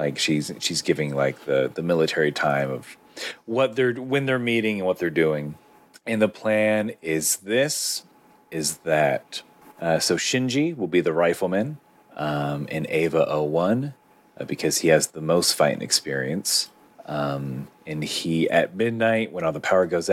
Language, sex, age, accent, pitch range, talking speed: English, male, 30-49, American, 75-115 Hz, 165 wpm